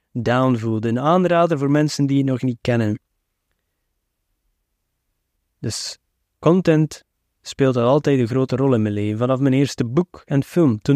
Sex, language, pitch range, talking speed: male, Dutch, 115-145 Hz, 150 wpm